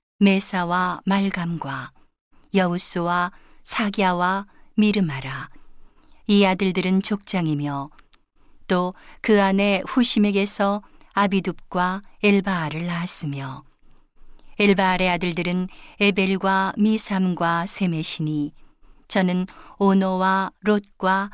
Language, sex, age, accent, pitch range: Korean, female, 50-69, native, 175-200 Hz